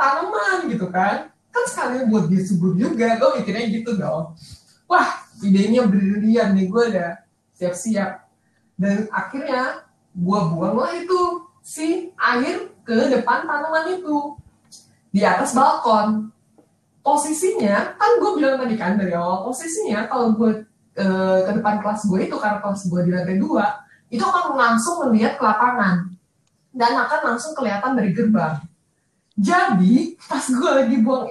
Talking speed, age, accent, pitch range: 140 wpm, 20-39, native, 205-275 Hz